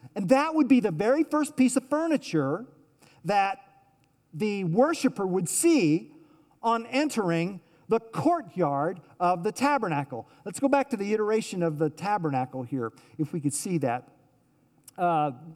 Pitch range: 145-240 Hz